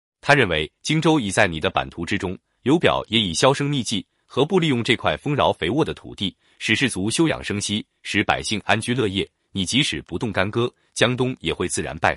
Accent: native